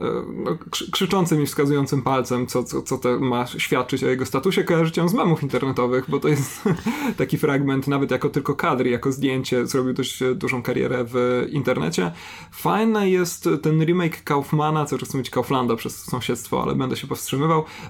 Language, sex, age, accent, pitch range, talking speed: Polish, male, 30-49, native, 130-160 Hz, 165 wpm